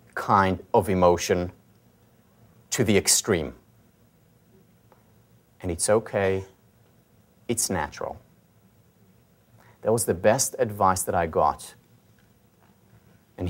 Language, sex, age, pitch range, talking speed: English, male, 30-49, 95-115 Hz, 90 wpm